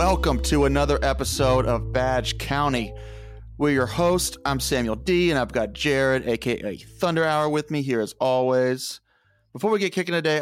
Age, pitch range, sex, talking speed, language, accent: 30-49, 115-150 Hz, male, 175 wpm, English, American